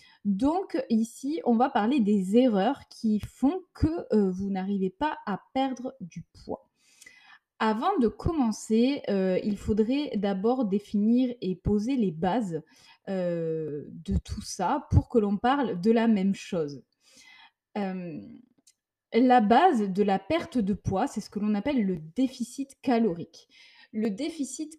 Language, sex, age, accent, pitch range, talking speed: French, female, 20-39, French, 195-255 Hz, 145 wpm